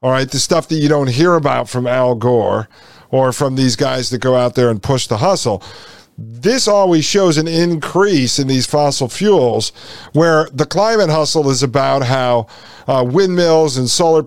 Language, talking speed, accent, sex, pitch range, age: English, 185 wpm, American, male, 130-170 Hz, 40-59